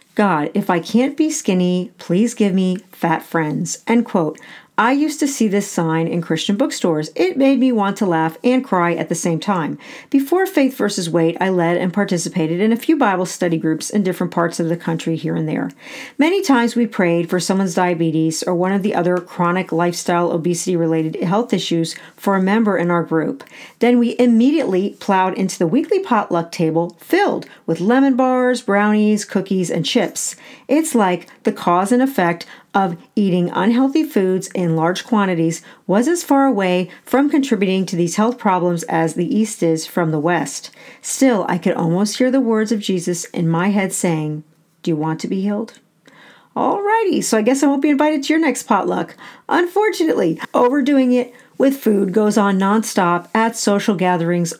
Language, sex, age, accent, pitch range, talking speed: English, female, 40-59, American, 175-240 Hz, 185 wpm